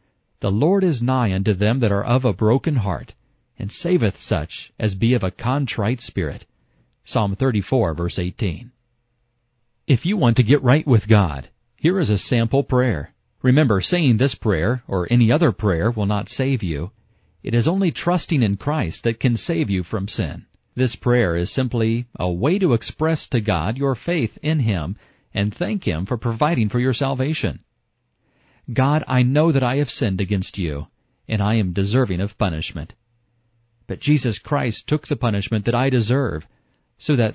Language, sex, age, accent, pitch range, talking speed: English, male, 50-69, American, 105-135 Hz, 175 wpm